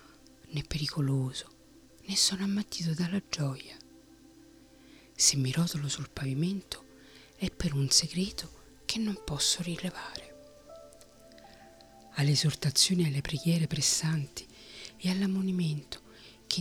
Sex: female